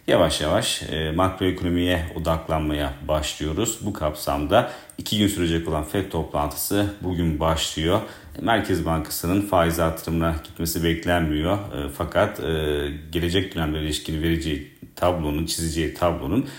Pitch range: 80-90 Hz